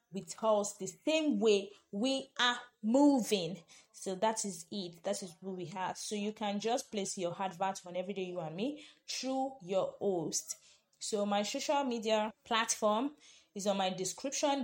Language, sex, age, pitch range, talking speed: English, female, 20-39, 185-250 Hz, 170 wpm